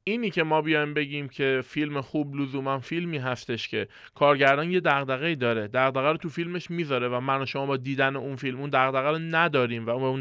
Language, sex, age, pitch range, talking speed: Persian, male, 20-39, 130-185 Hz, 215 wpm